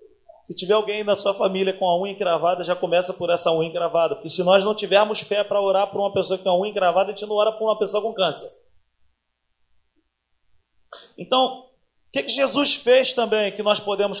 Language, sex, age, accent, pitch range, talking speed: Portuguese, male, 40-59, Brazilian, 165-215 Hz, 215 wpm